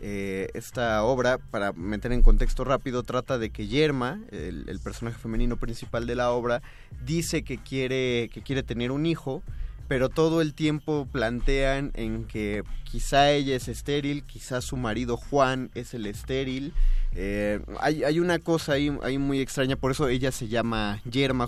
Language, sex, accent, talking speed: Spanish, male, Mexican, 170 wpm